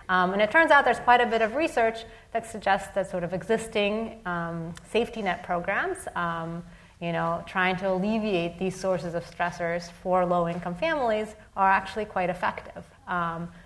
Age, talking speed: 30-49, 170 wpm